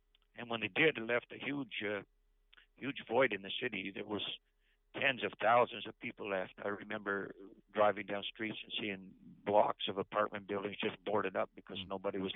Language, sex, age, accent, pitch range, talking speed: English, male, 60-79, American, 100-110 Hz, 190 wpm